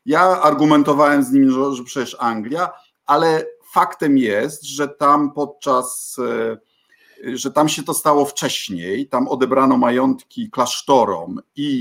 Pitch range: 130-175 Hz